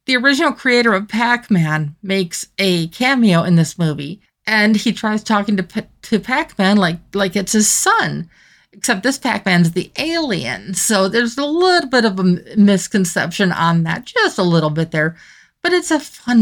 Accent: American